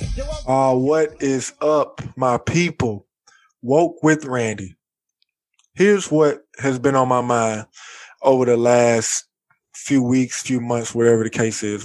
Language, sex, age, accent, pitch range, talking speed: English, male, 20-39, American, 125-150 Hz, 135 wpm